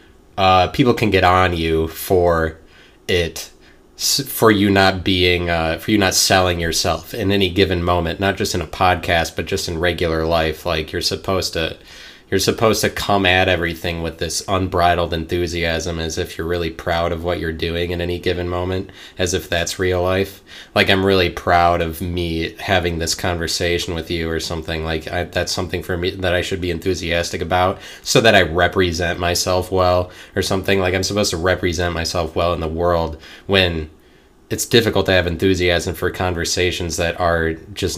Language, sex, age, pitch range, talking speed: English, male, 30-49, 85-95 Hz, 185 wpm